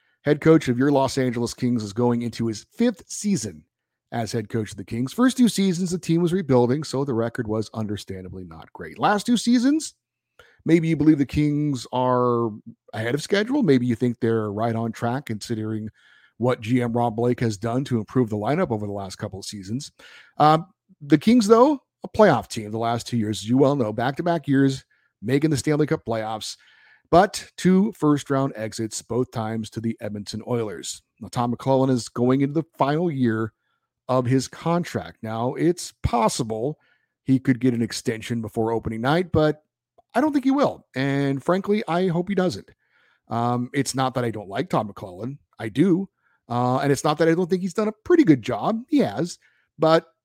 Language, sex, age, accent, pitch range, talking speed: English, male, 50-69, American, 115-165 Hz, 195 wpm